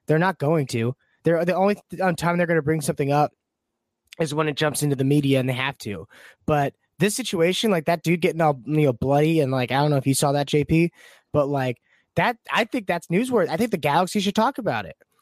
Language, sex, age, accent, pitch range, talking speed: English, male, 20-39, American, 145-190 Hz, 250 wpm